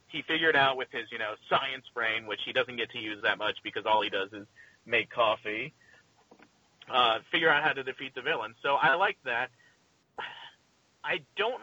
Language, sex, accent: English, male, American